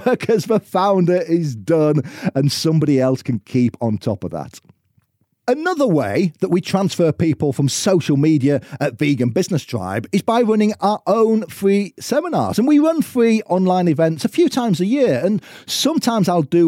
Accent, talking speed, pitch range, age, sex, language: British, 175 wpm, 145-225 Hz, 40-59, male, English